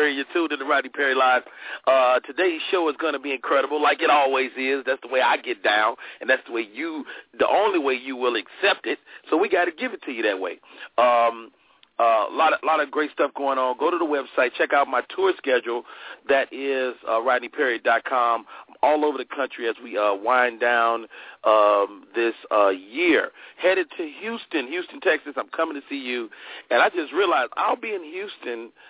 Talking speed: 215 wpm